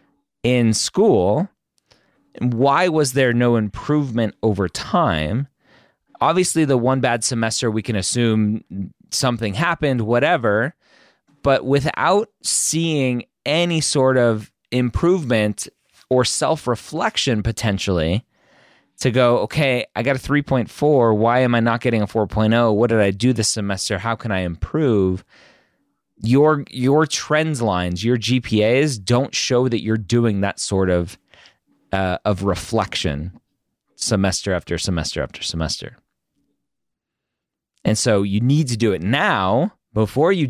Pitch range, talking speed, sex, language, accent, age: 100-130 Hz, 130 wpm, male, English, American, 30-49